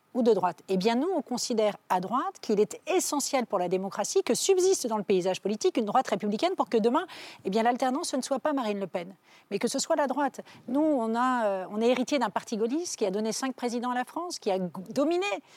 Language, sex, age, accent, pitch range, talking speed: French, female, 40-59, French, 195-260 Hz, 245 wpm